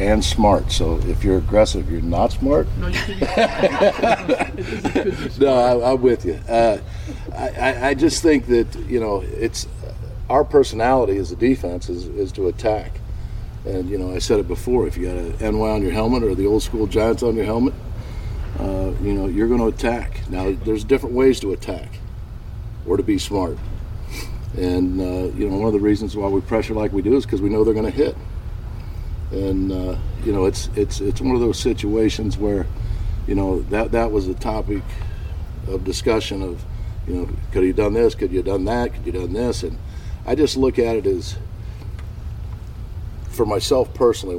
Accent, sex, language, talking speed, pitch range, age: American, male, English, 190 wpm, 95-110 Hz, 50-69